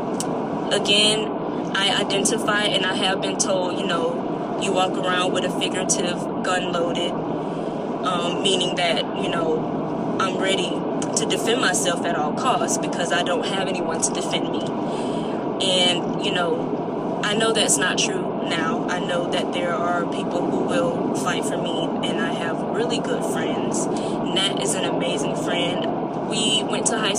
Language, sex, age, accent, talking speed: English, female, 20-39, American, 165 wpm